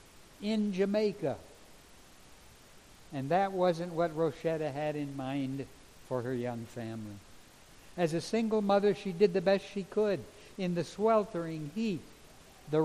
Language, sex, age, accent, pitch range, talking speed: English, male, 60-79, American, 145-200 Hz, 135 wpm